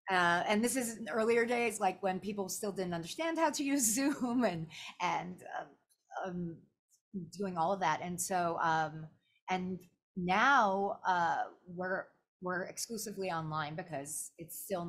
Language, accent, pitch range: English, American, 155-190 Hz